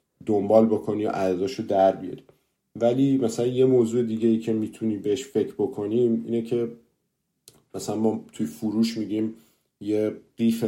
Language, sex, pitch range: Persian, male, 95-115 Hz